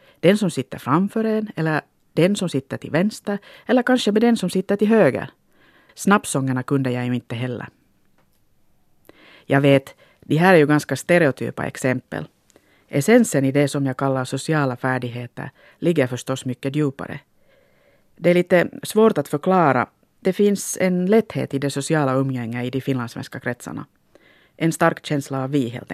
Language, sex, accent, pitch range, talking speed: Swedish, female, Finnish, 130-165 Hz, 160 wpm